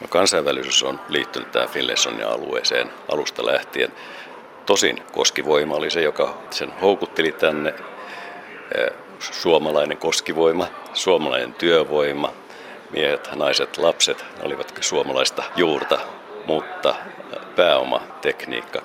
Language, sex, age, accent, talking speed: Finnish, male, 60-79, native, 90 wpm